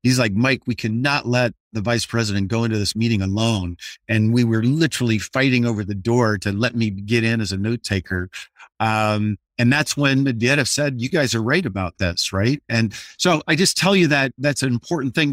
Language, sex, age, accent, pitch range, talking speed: English, male, 50-69, American, 100-130 Hz, 215 wpm